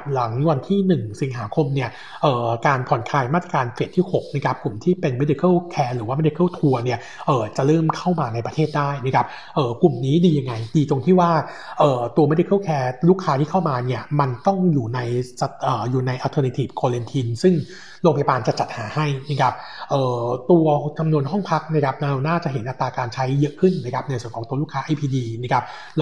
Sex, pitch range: male, 130-160 Hz